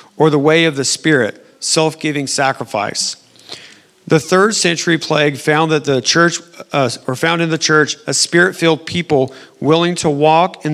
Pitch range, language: 135-160 Hz, English